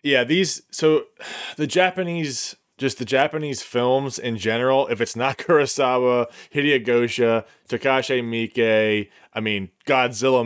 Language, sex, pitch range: English, male, 105-130 Hz